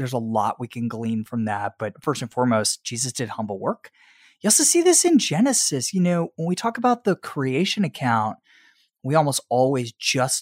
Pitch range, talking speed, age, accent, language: 115-185 Hz, 200 wpm, 20-39, American, English